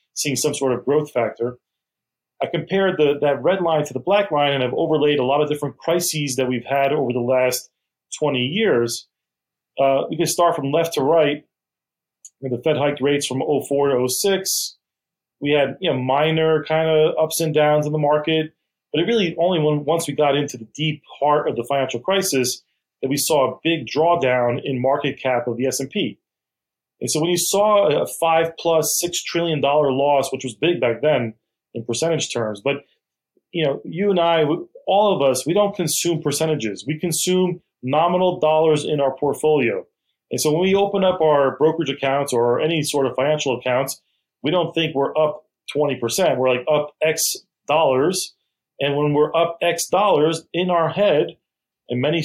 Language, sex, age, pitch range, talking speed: English, male, 30-49, 135-165 Hz, 185 wpm